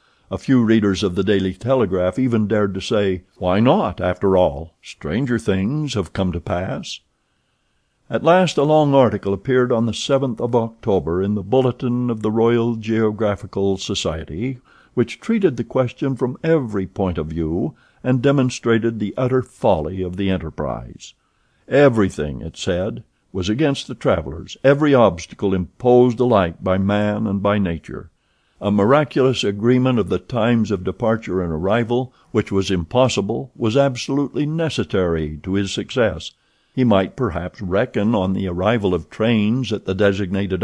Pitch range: 95-125 Hz